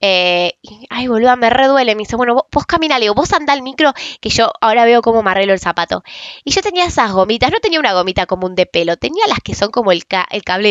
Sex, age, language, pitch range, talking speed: female, 10-29, Spanish, 190-310 Hz, 275 wpm